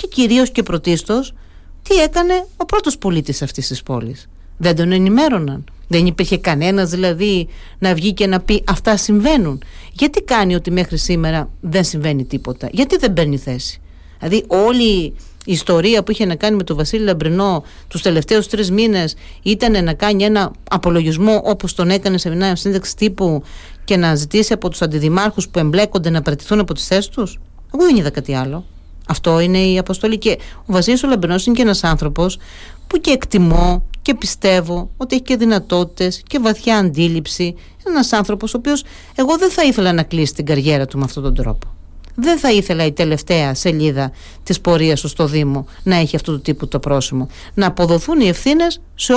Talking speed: 180 wpm